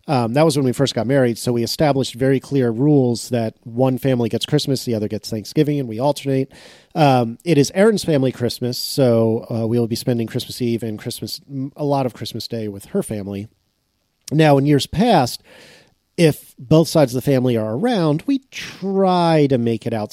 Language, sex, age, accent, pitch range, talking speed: English, male, 40-59, American, 115-145 Hz, 205 wpm